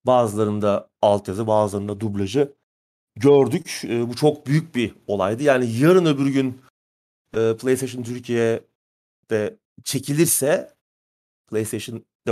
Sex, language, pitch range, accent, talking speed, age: male, Turkish, 110-155 Hz, native, 95 wpm, 40-59